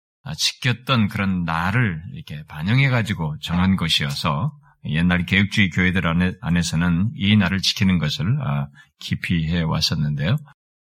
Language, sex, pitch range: Korean, male, 90-130 Hz